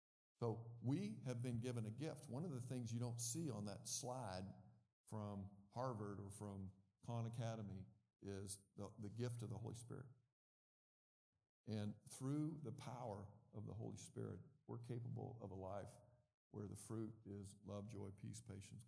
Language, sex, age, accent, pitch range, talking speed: English, male, 50-69, American, 105-120 Hz, 165 wpm